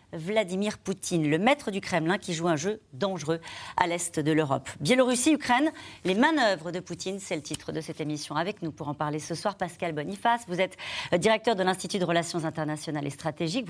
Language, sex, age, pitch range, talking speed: French, female, 40-59, 170-230 Hz, 195 wpm